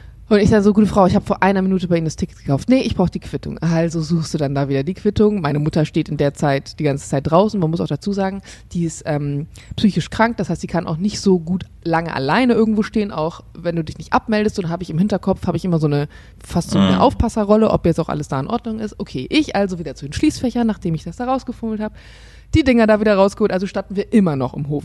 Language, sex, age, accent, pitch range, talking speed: German, female, 20-39, German, 170-220 Hz, 275 wpm